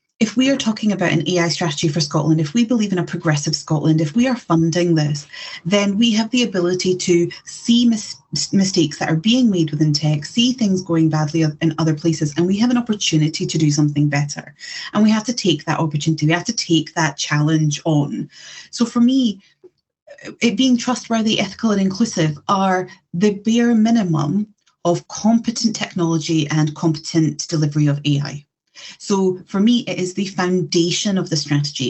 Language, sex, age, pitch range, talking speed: English, female, 30-49, 155-205 Hz, 180 wpm